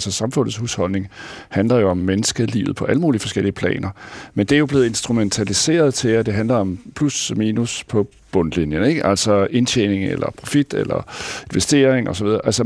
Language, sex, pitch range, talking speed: Danish, male, 105-140 Hz, 165 wpm